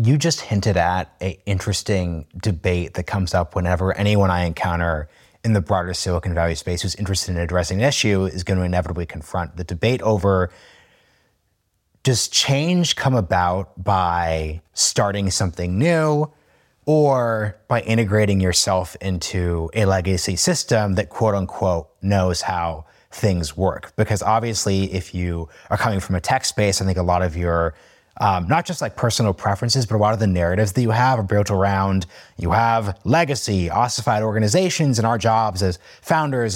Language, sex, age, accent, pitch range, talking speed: English, male, 30-49, American, 90-115 Hz, 165 wpm